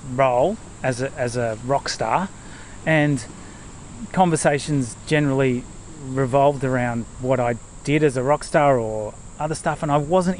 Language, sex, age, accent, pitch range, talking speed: English, male, 30-49, Australian, 115-155 Hz, 145 wpm